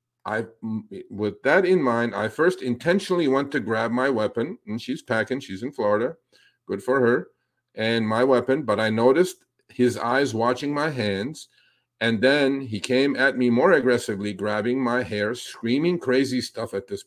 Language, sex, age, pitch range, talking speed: English, male, 50-69, 115-140 Hz, 170 wpm